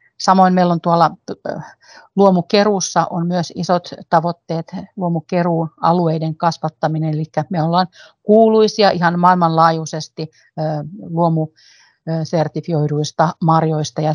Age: 40-59